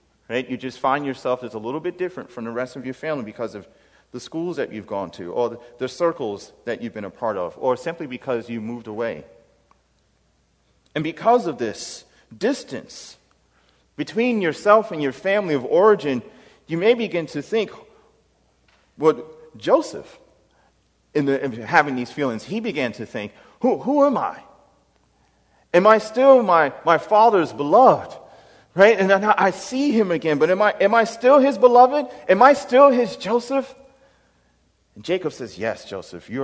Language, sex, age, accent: English, male, 40-59, American